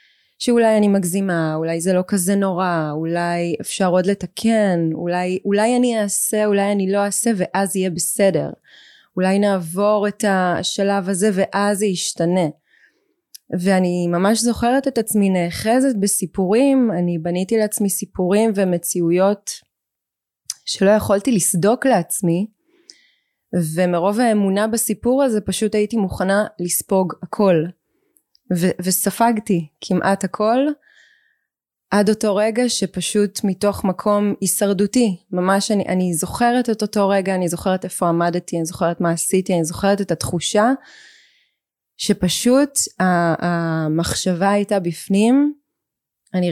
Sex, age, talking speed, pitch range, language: female, 20-39, 115 wpm, 180-215 Hz, Hebrew